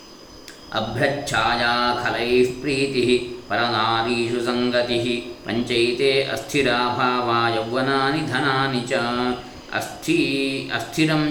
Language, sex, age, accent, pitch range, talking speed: Kannada, male, 20-39, native, 120-140 Hz, 60 wpm